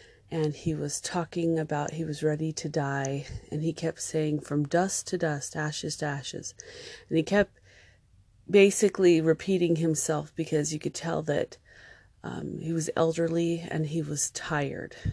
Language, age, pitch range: English, 30-49, 145-170 Hz